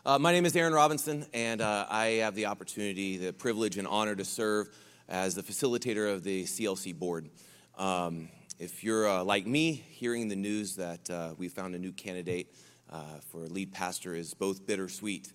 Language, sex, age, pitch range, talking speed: English, male, 30-49, 95-120 Hz, 190 wpm